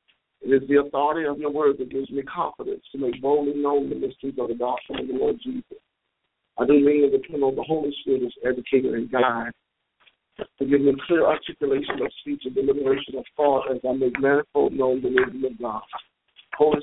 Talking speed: 205 wpm